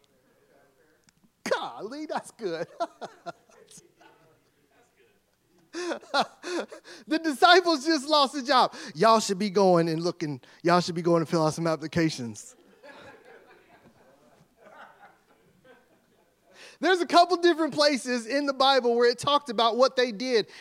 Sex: male